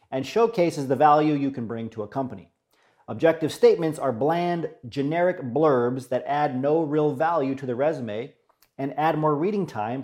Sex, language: male, English